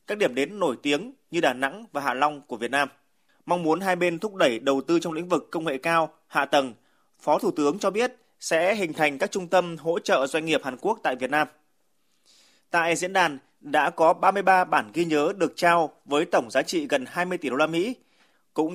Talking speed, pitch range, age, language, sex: 230 wpm, 150-185 Hz, 20-39, Vietnamese, male